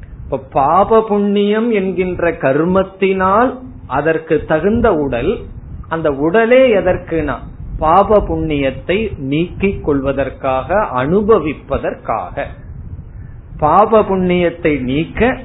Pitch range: 135-180 Hz